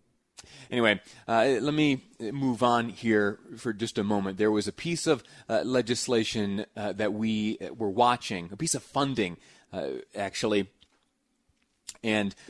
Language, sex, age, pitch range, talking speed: English, male, 30-49, 105-125 Hz, 145 wpm